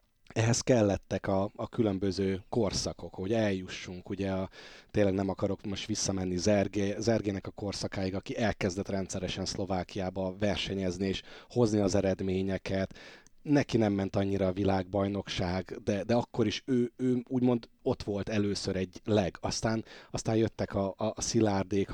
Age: 30-49